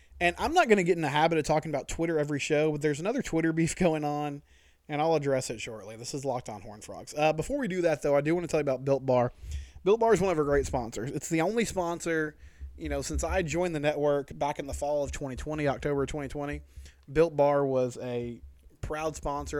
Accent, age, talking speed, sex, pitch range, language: American, 20-39, 250 wpm, male, 120-155 Hz, English